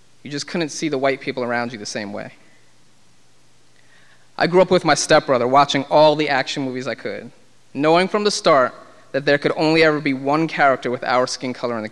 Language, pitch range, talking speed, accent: English, 130-170 Hz, 215 wpm, American